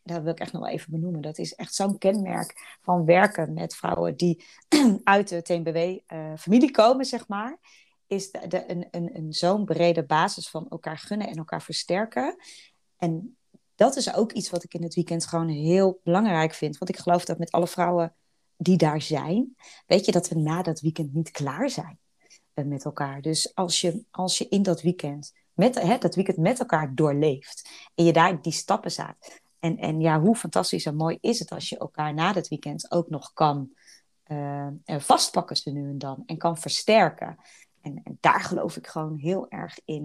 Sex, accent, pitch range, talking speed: female, Dutch, 160-185 Hz, 185 wpm